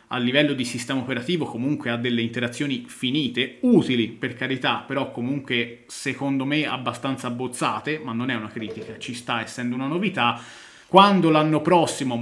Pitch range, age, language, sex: 120-155 Hz, 30-49, Italian, male